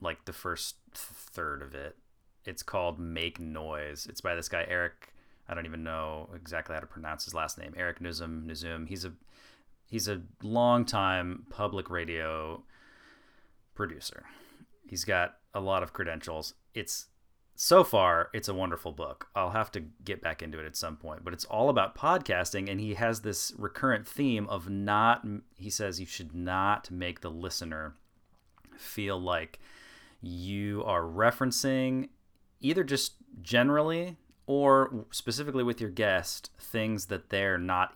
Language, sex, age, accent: English, male, 30-49, American